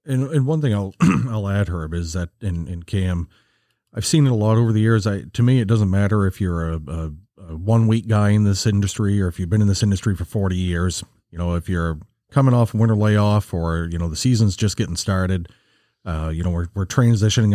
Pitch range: 95-110 Hz